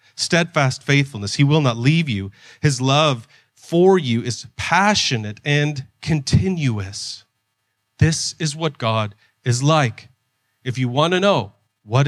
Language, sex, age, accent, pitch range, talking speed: English, male, 30-49, American, 115-145 Hz, 135 wpm